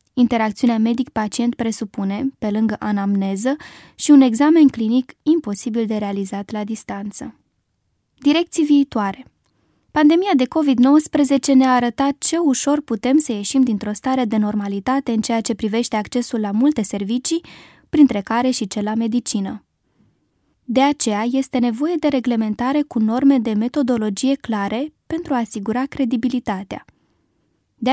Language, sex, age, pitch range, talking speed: Romanian, female, 20-39, 215-270 Hz, 130 wpm